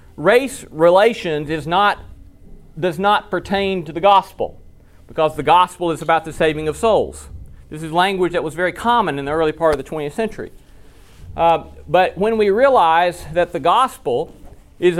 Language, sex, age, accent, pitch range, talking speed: English, male, 40-59, American, 170-225 Hz, 170 wpm